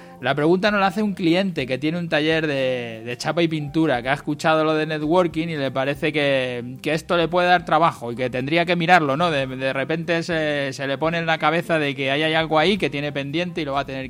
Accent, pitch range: Spanish, 130-165 Hz